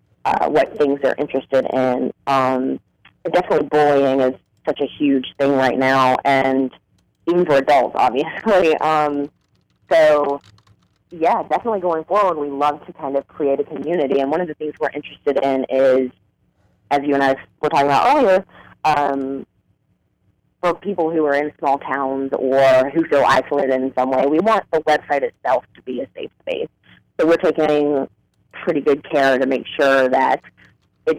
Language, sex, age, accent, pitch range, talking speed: English, female, 30-49, American, 130-155 Hz, 170 wpm